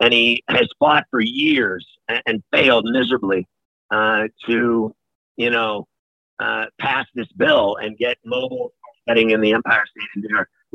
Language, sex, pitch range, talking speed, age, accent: English, male, 115-140 Hz, 155 wpm, 50-69, American